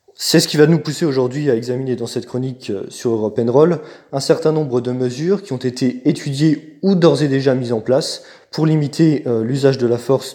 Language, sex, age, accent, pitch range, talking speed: French, male, 20-39, French, 120-145 Hz, 215 wpm